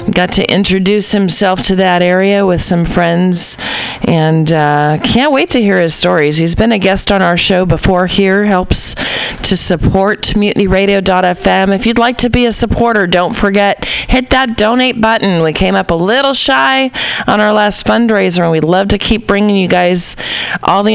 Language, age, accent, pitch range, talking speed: English, 40-59, American, 165-220 Hz, 185 wpm